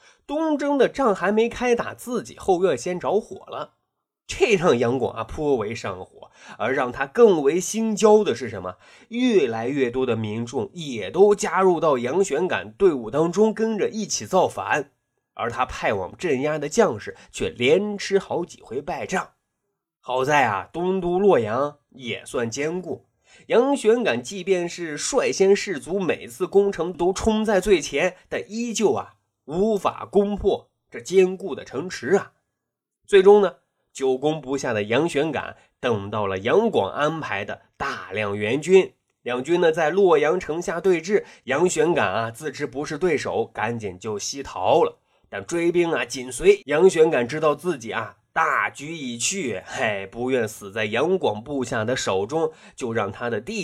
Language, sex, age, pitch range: Chinese, male, 20-39, 140-215 Hz